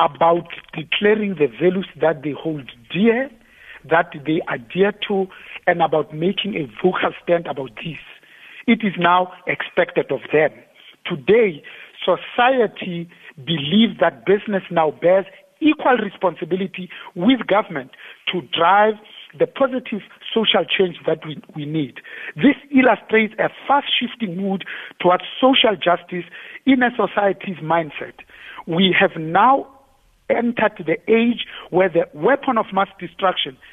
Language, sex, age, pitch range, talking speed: English, male, 50-69, 170-225 Hz, 130 wpm